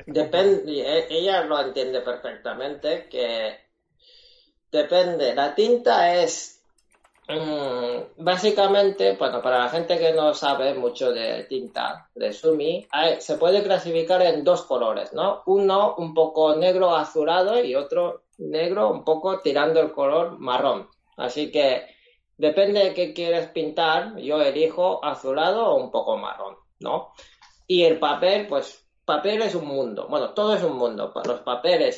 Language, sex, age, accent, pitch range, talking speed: Spanish, male, 20-39, Spanish, 150-200 Hz, 145 wpm